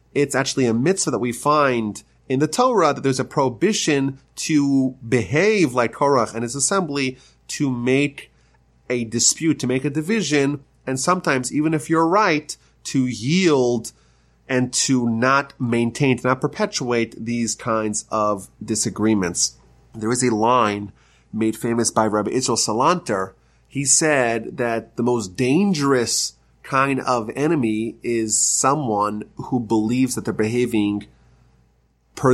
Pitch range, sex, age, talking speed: 115-150 Hz, male, 30-49, 140 wpm